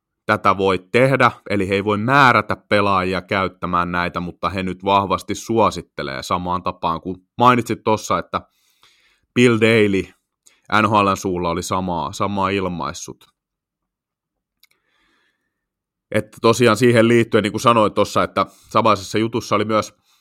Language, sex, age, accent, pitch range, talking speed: Finnish, male, 30-49, native, 95-110 Hz, 120 wpm